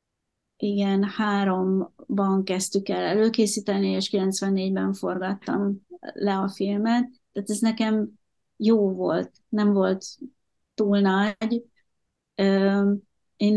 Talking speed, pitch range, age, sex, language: 95 wpm, 195-215 Hz, 30-49, female, Hungarian